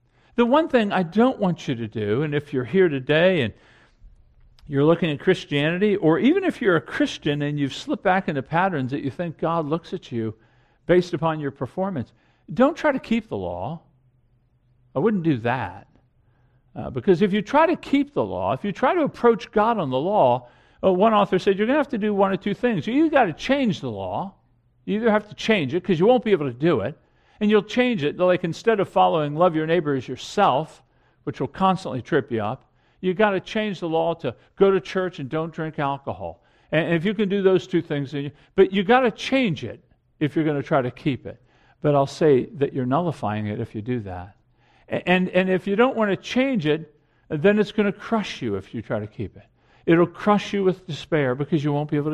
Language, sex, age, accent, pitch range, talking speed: English, male, 50-69, American, 130-200 Hz, 230 wpm